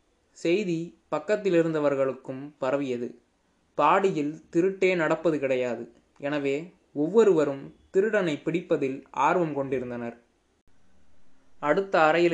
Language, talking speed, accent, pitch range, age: Tamil, 75 wpm, native, 140-175 Hz, 20-39